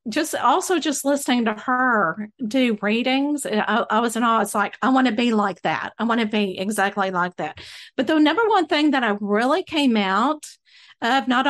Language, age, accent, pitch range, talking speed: English, 50-69, American, 210-265 Hz, 210 wpm